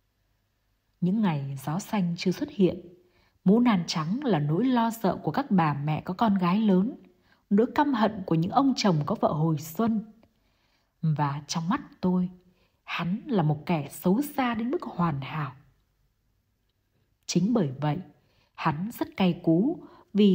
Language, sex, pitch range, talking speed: Vietnamese, female, 150-225 Hz, 160 wpm